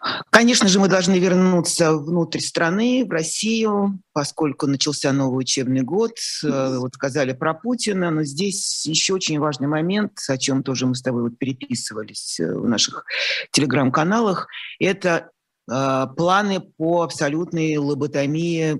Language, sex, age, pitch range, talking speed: Russian, male, 30-49, 135-165 Hz, 125 wpm